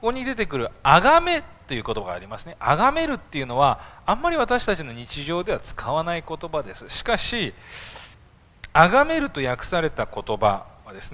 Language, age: Japanese, 40-59